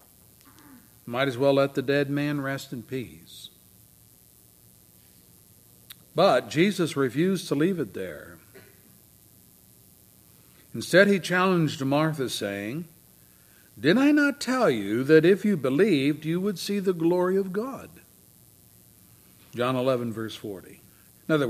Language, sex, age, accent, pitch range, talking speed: English, male, 60-79, American, 135-210 Hz, 125 wpm